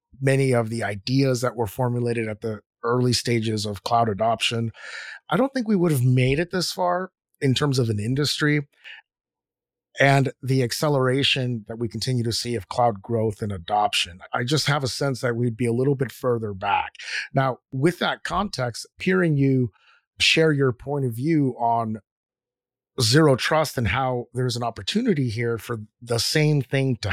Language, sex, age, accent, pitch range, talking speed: English, male, 30-49, American, 115-135 Hz, 175 wpm